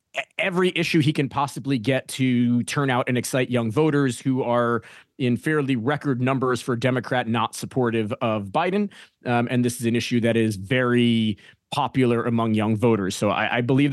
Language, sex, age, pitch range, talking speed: English, male, 30-49, 120-145 Hz, 180 wpm